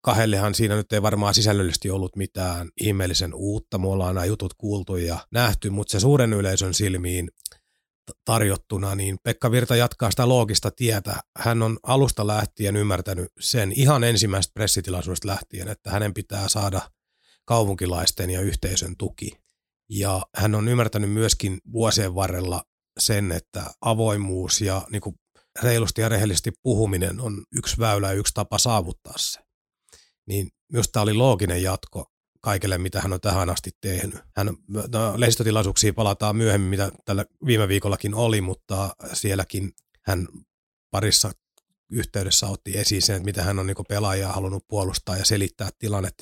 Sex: male